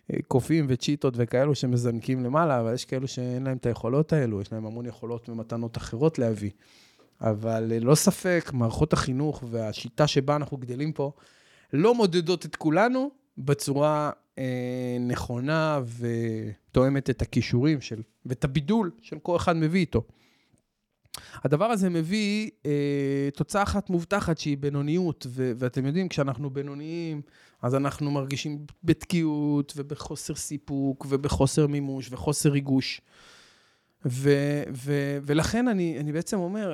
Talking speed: 125 wpm